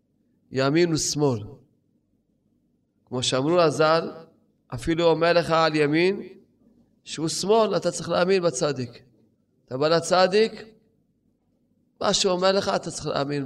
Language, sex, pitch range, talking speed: Hebrew, male, 140-185 Hz, 115 wpm